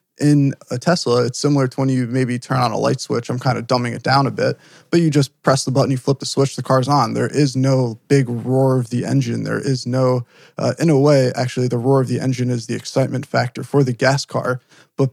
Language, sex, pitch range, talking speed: English, male, 125-135 Hz, 260 wpm